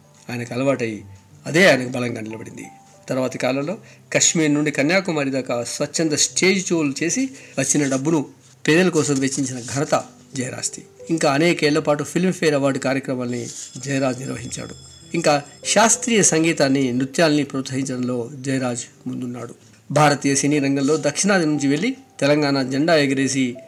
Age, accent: 50-69, native